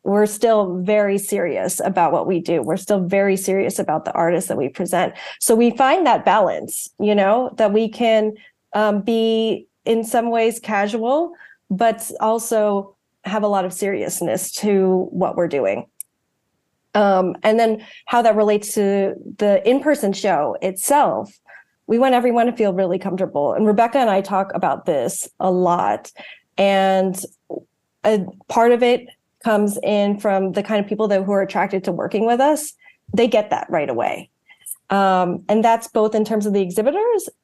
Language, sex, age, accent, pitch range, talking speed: English, female, 30-49, American, 195-235 Hz, 170 wpm